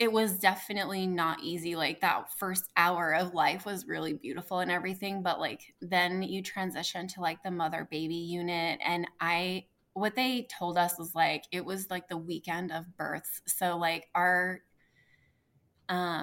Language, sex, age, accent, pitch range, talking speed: English, female, 20-39, American, 175-200 Hz, 170 wpm